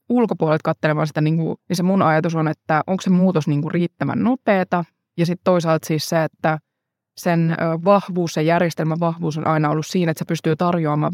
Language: Finnish